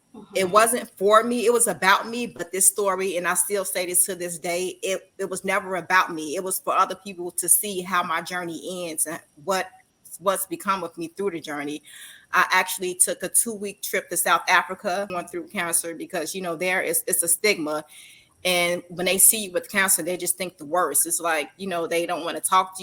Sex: female